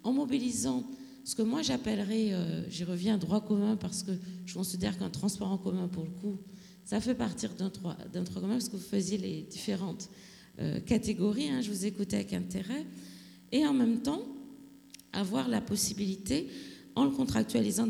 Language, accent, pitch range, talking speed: English, French, 185-235 Hz, 180 wpm